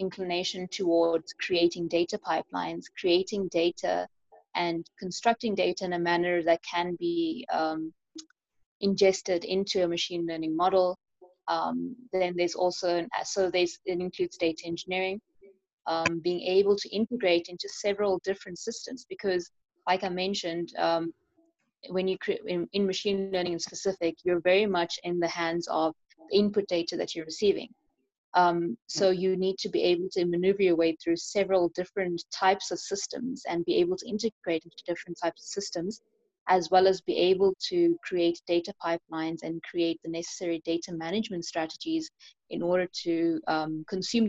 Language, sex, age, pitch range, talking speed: English, female, 20-39, 170-195 Hz, 160 wpm